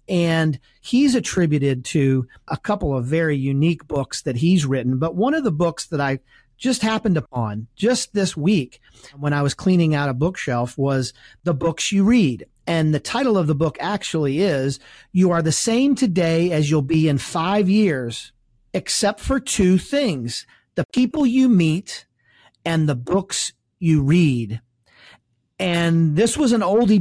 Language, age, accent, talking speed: English, 40-59, American, 165 wpm